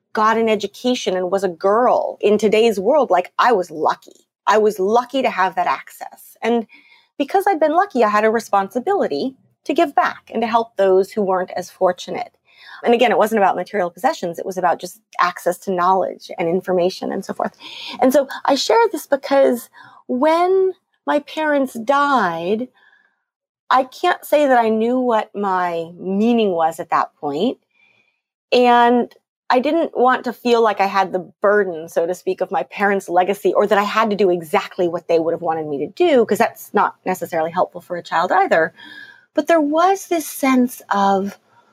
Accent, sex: American, female